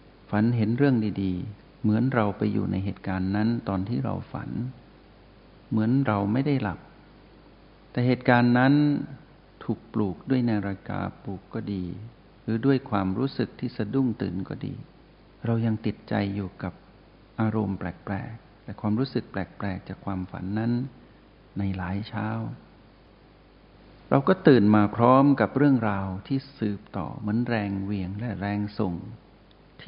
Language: Thai